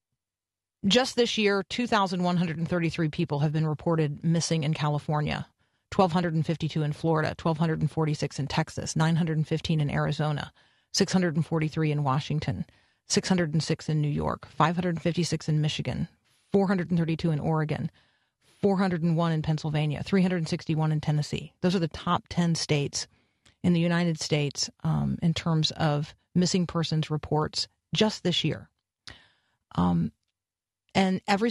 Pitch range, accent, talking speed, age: 150-185 Hz, American, 120 wpm, 40-59